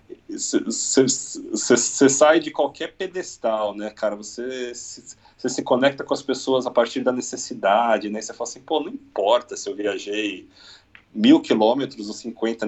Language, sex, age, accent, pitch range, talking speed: Portuguese, male, 40-59, Brazilian, 105-140 Hz, 145 wpm